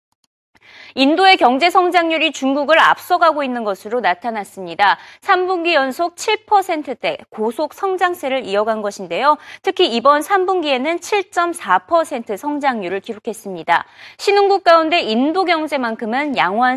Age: 20-39